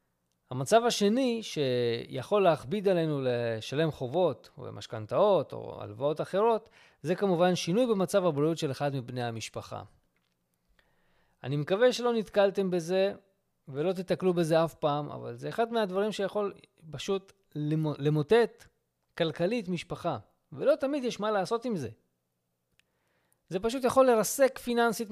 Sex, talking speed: male, 125 wpm